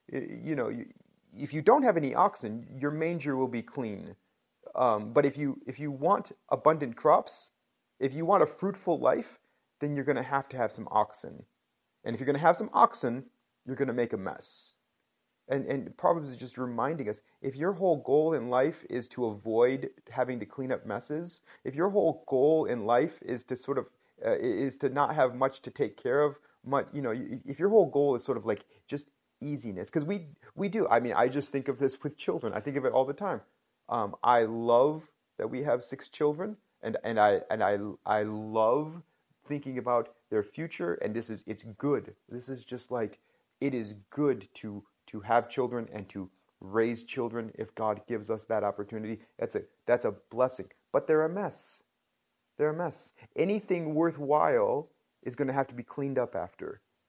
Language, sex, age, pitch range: English, male, 30-49, 115-155 Hz